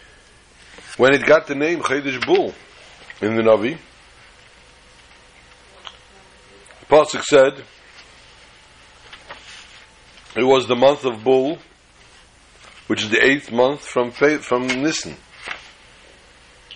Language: English